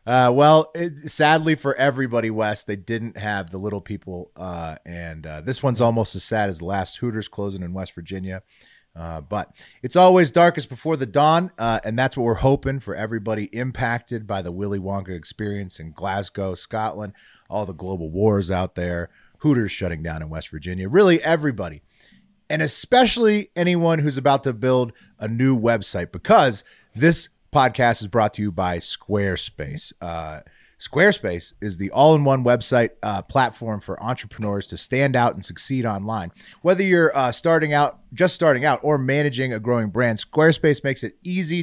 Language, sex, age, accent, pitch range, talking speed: English, male, 30-49, American, 100-145 Hz, 175 wpm